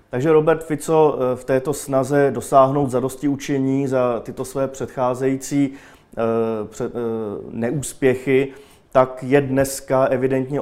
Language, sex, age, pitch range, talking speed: Czech, male, 30-49, 115-130 Hz, 100 wpm